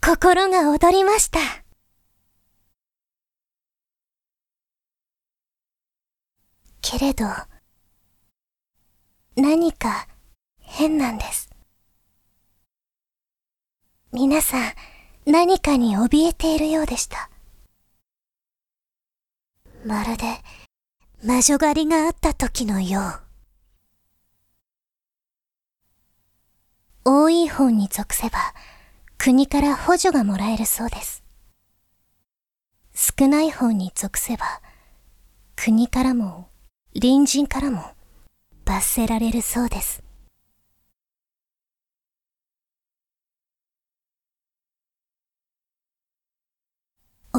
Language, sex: Japanese, male